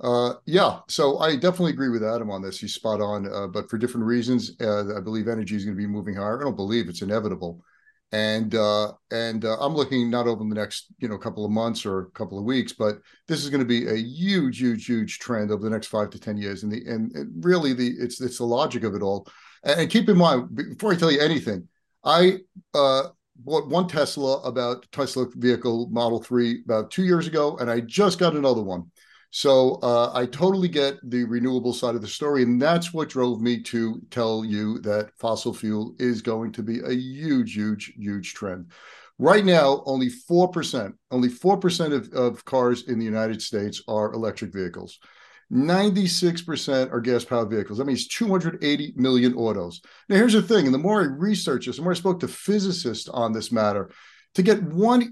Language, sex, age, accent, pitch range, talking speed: English, male, 50-69, American, 110-150 Hz, 210 wpm